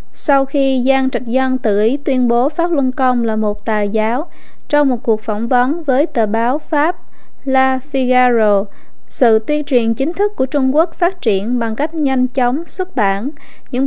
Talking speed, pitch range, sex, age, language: 190 wpm, 225-285 Hz, female, 20-39, Vietnamese